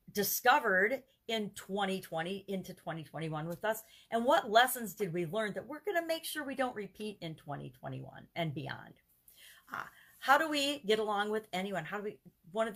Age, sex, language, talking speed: 40-59, female, English, 185 wpm